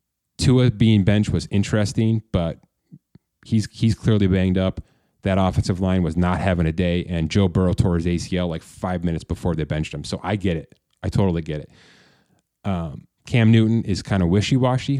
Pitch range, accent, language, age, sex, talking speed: 90-110 Hz, American, English, 30-49, male, 190 wpm